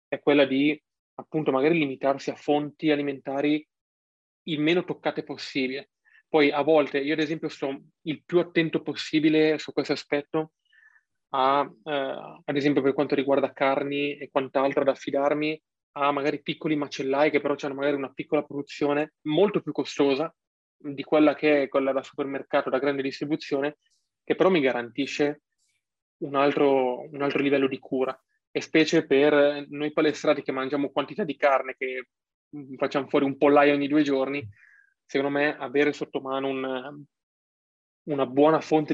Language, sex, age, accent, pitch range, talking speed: Italian, male, 20-39, native, 135-150 Hz, 155 wpm